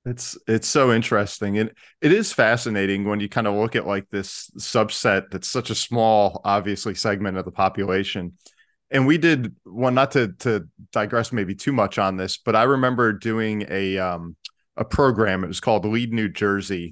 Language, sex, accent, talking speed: English, male, American, 195 wpm